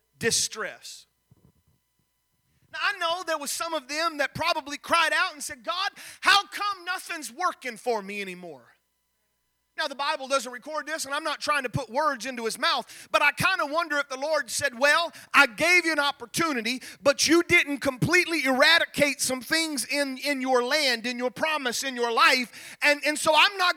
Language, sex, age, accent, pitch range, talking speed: English, male, 30-49, American, 205-295 Hz, 190 wpm